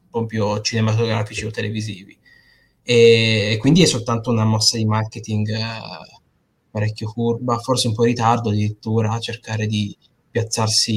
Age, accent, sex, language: 20-39, native, male, Italian